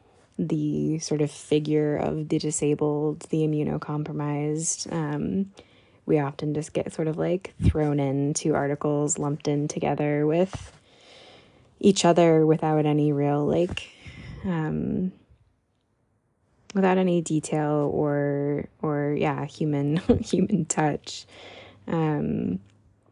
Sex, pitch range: female, 140-160 Hz